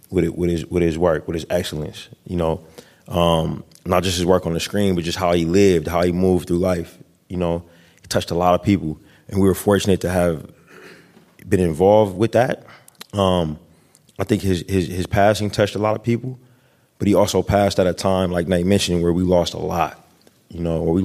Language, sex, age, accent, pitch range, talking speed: English, male, 20-39, American, 85-100 Hz, 225 wpm